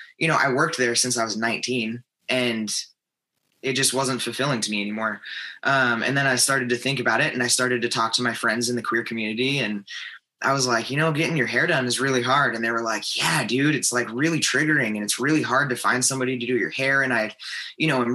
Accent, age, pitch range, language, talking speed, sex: American, 20-39, 120-140 Hz, English, 255 wpm, male